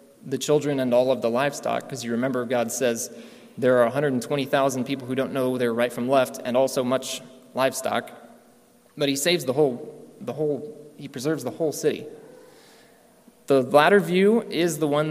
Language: English